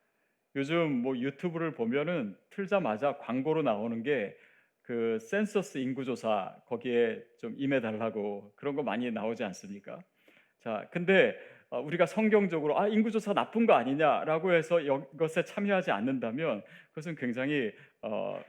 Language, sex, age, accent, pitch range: Korean, male, 30-49, native, 130-200 Hz